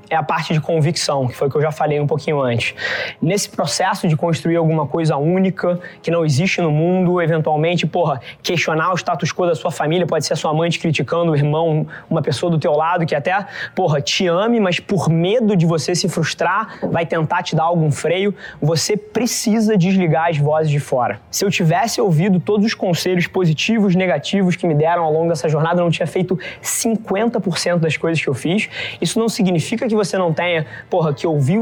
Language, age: Portuguese, 20-39